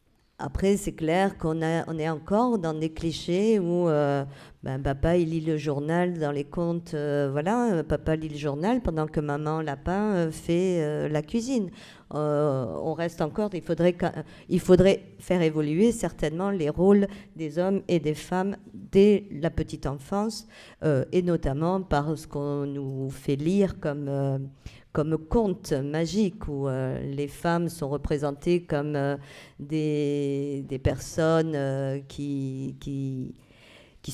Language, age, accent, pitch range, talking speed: French, 50-69, French, 145-180 Hz, 155 wpm